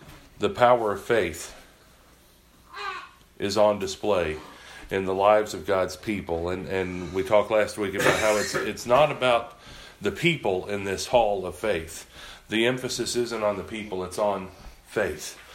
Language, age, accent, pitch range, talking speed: English, 40-59, American, 105-135 Hz, 160 wpm